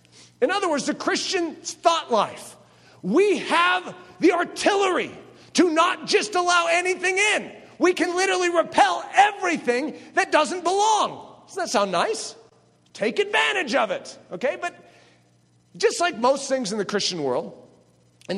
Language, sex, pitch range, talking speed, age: English, male, 190-310 Hz, 145 wpm, 40-59